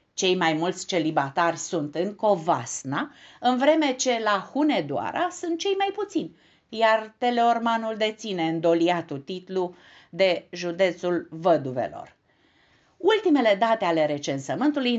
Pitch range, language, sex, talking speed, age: 165-255 Hz, Romanian, female, 110 wpm, 50-69